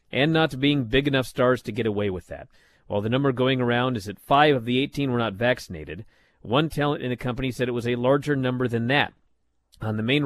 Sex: male